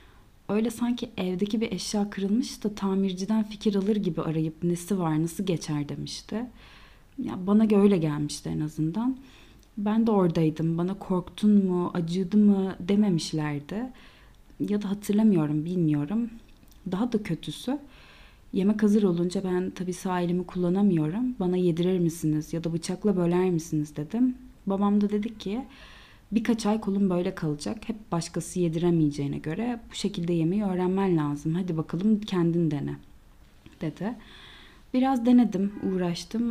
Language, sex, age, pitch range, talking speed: Turkish, female, 30-49, 165-215 Hz, 135 wpm